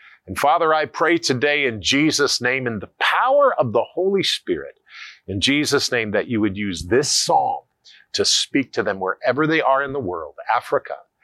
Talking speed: 185 wpm